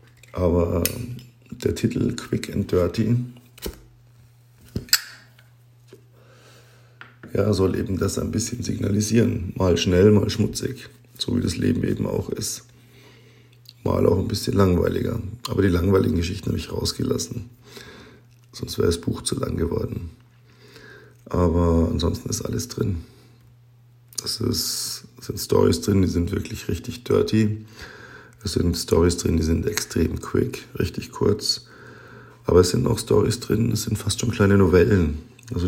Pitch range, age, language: 95-120 Hz, 50-69, German